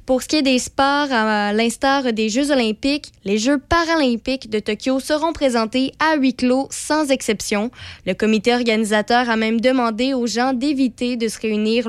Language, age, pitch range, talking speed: French, 20-39, 215-260 Hz, 175 wpm